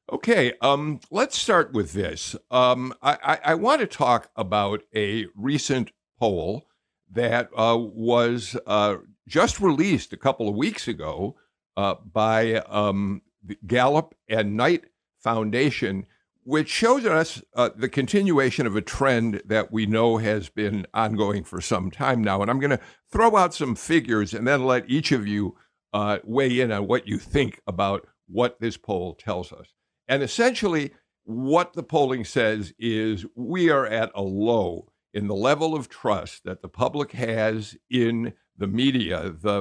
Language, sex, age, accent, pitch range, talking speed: English, male, 60-79, American, 105-130 Hz, 160 wpm